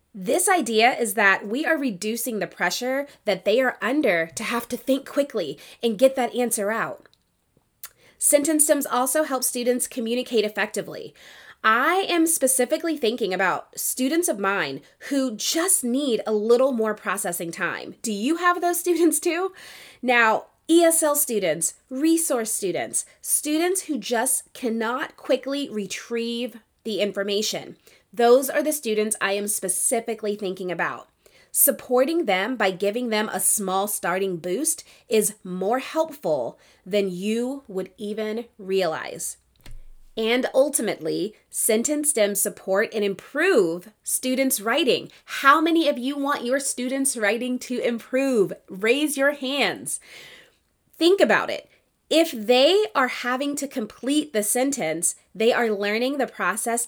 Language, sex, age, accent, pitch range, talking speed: English, female, 20-39, American, 205-275 Hz, 135 wpm